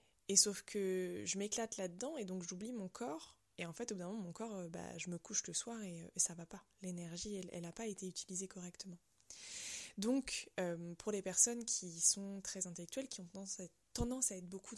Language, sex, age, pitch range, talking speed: French, female, 20-39, 170-210 Hz, 220 wpm